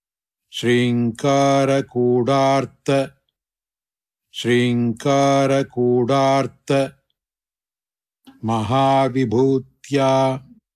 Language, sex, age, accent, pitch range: English, male, 60-79, Indian, 130-140 Hz